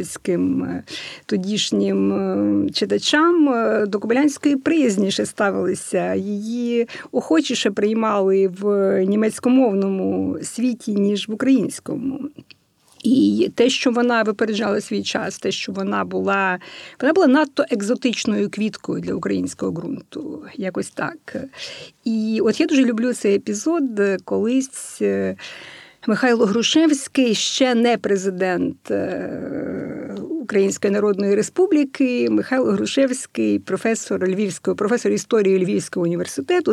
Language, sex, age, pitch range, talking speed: Ukrainian, female, 50-69, 195-255 Hz, 100 wpm